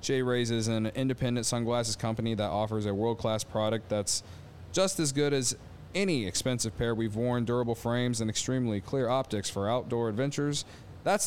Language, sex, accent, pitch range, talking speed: English, male, American, 110-135 Hz, 170 wpm